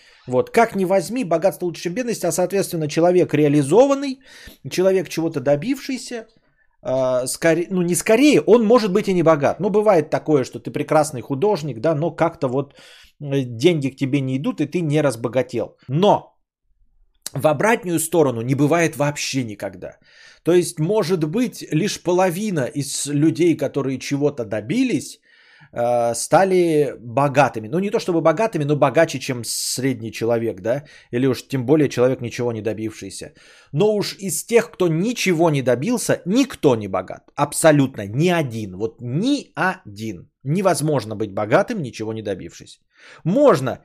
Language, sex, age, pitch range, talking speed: Bulgarian, male, 30-49, 135-190 Hz, 150 wpm